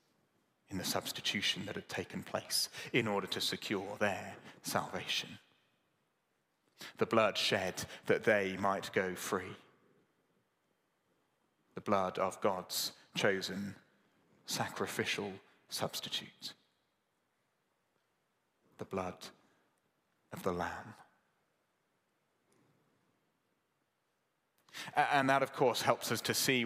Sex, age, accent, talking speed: male, 30-49, British, 90 wpm